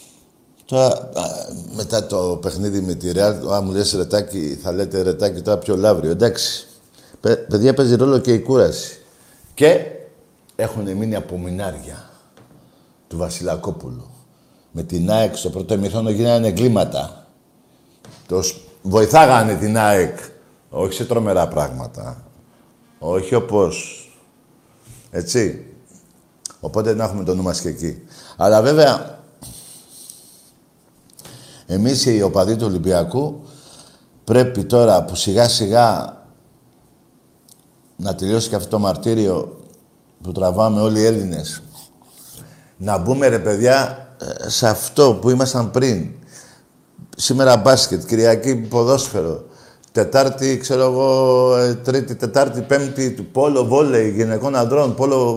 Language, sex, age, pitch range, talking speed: Greek, male, 50-69, 95-130 Hz, 115 wpm